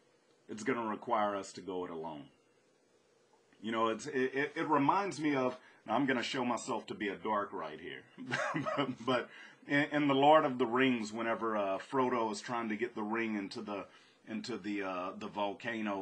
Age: 30-49